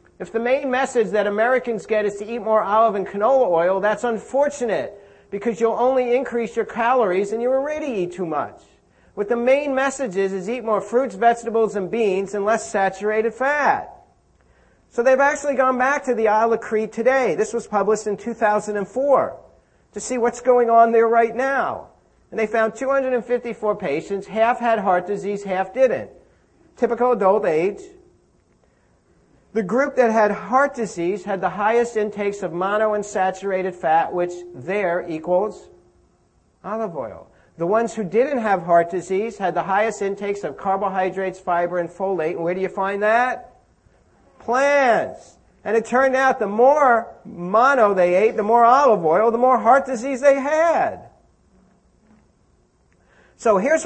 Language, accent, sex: English, American, male